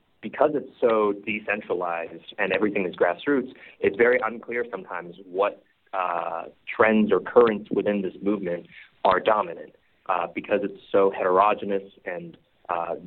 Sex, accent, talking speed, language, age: male, American, 135 wpm, English, 30-49